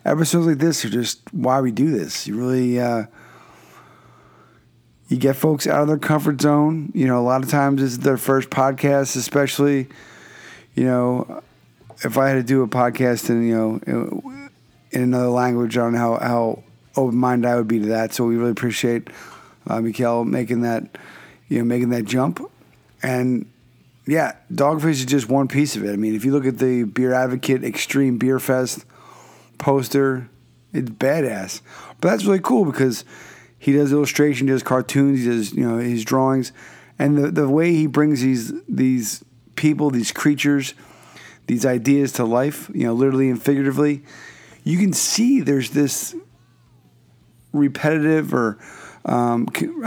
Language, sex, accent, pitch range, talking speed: English, male, American, 120-145 Hz, 165 wpm